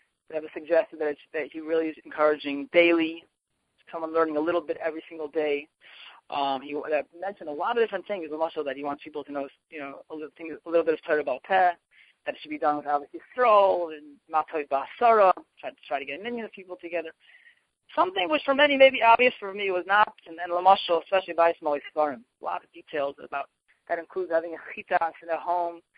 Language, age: English, 30-49